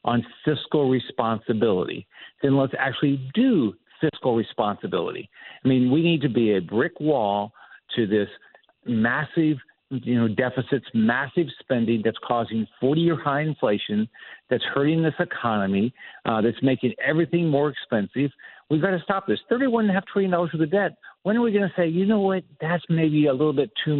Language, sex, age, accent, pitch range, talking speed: English, male, 50-69, American, 130-185 Hz, 175 wpm